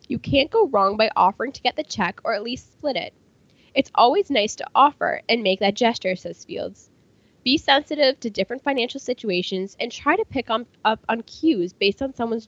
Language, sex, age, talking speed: English, female, 10-29, 200 wpm